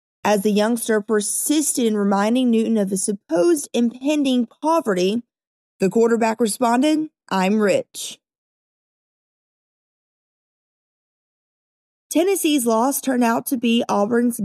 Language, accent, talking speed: English, American, 100 wpm